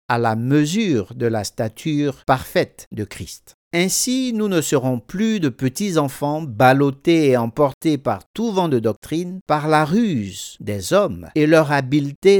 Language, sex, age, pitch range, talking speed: French, male, 50-69, 120-175 Hz, 160 wpm